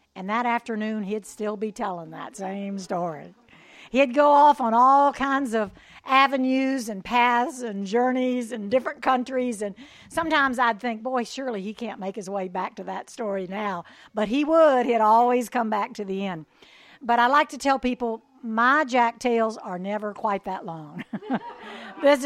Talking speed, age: 180 wpm, 60-79